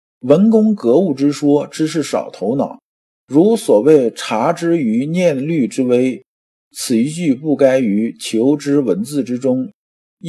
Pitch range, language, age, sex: 130-205 Hz, Chinese, 50-69, male